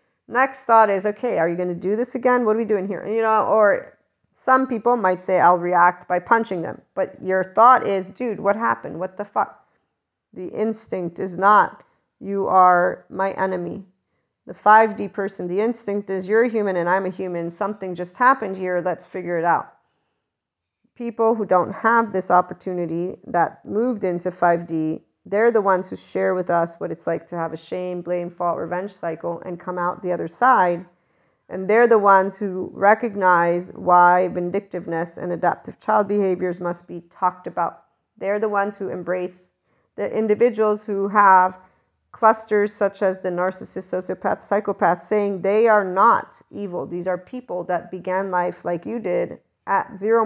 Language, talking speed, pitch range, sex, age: English, 180 wpm, 180-215 Hz, female, 40-59